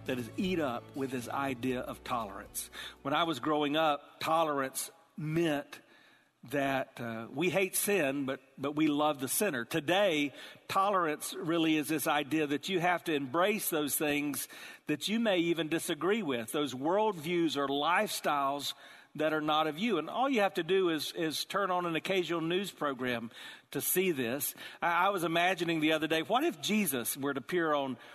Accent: American